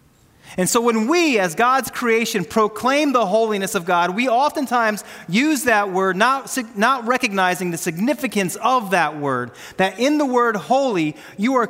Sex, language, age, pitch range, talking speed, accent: male, English, 30-49, 150-220 Hz, 165 wpm, American